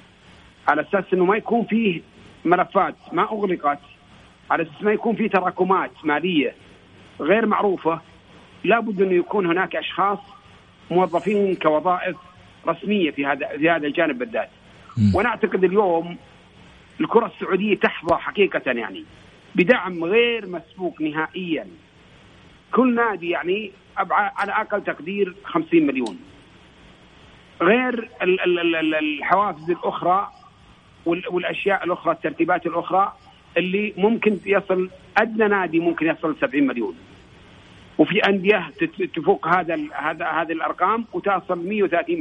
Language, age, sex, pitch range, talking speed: Arabic, 50-69, male, 165-205 Hz, 105 wpm